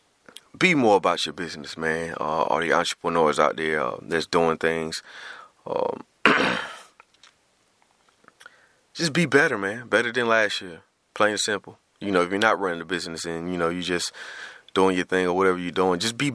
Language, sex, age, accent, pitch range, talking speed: English, male, 30-49, American, 85-100 Hz, 185 wpm